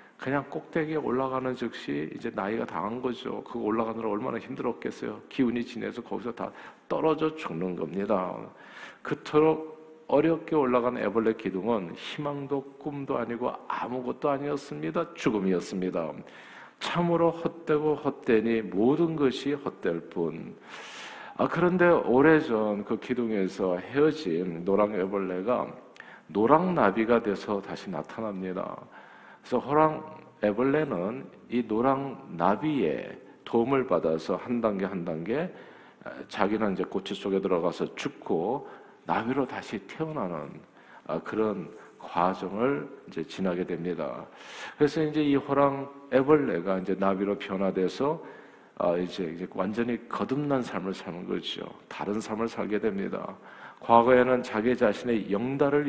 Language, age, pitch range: Korean, 50-69, 100-150 Hz